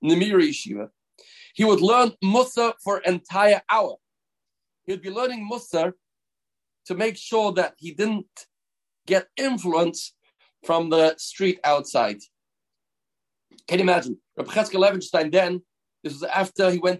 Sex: male